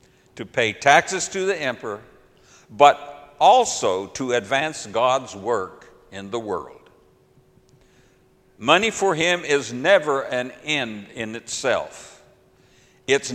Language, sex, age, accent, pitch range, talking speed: English, male, 60-79, American, 130-175 Hz, 110 wpm